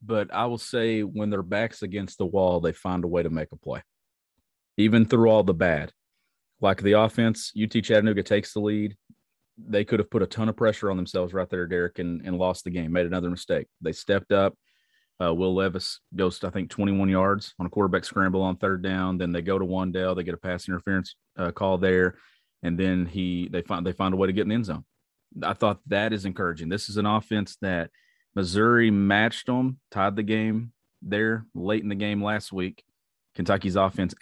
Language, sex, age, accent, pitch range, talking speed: English, male, 30-49, American, 95-105 Hz, 215 wpm